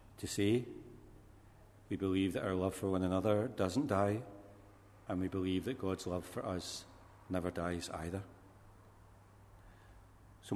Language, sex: English, male